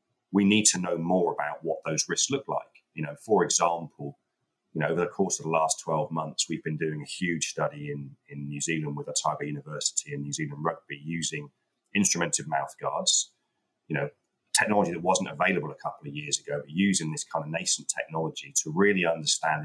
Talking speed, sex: 200 wpm, male